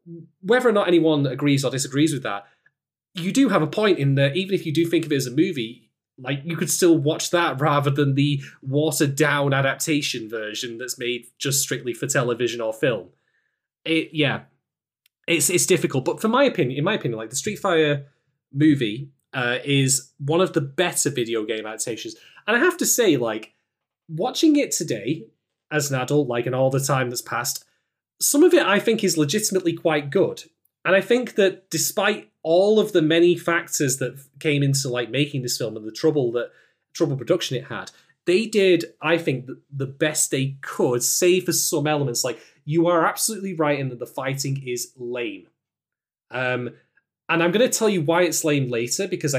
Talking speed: 195 wpm